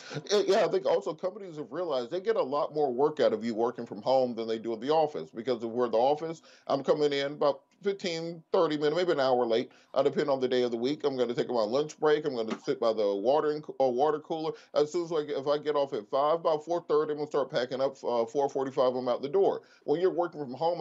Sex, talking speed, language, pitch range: male, 275 wpm, English, 130-165 Hz